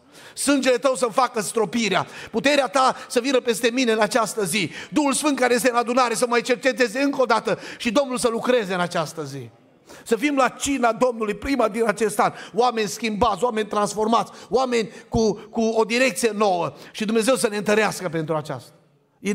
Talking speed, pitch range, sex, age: 185 wpm, 210-250 Hz, male, 30-49